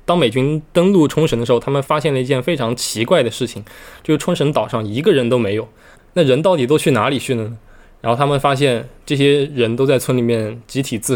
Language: Chinese